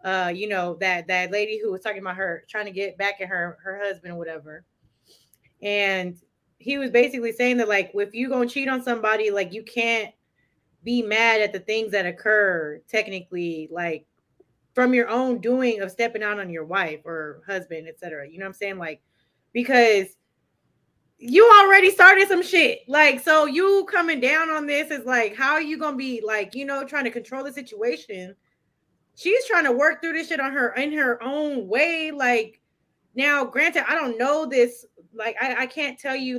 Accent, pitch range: American, 195-265 Hz